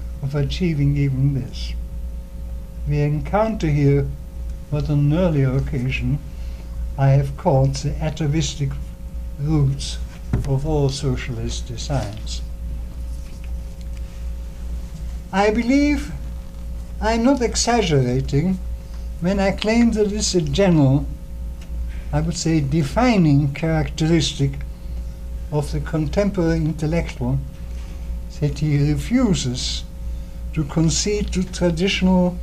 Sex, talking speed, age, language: male, 95 wpm, 60-79, English